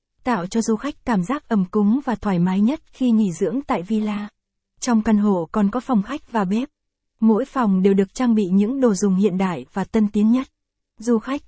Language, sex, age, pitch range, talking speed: Vietnamese, female, 20-39, 200-235 Hz, 225 wpm